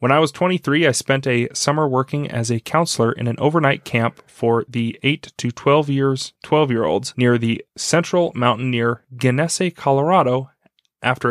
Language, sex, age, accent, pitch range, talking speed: English, male, 30-49, American, 120-145 Hz, 175 wpm